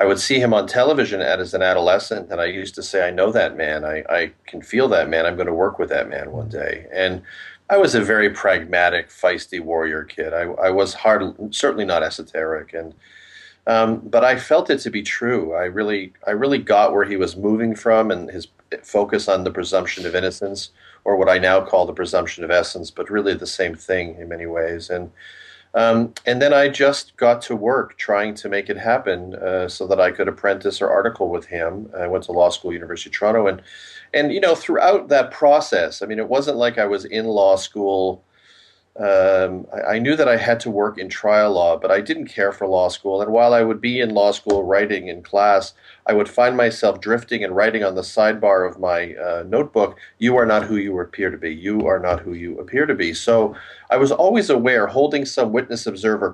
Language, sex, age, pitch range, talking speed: English, male, 40-59, 95-115 Hz, 225 wpm